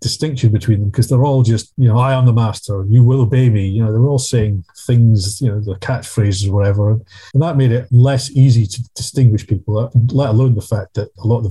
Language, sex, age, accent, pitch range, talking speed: English, male, 40-59, British, 110-125 Hz, 240 wpm